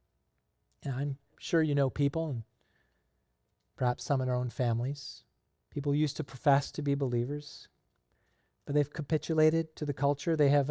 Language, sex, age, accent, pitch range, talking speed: English, male, 40-59, American, 110-155 Hz, 155 wpm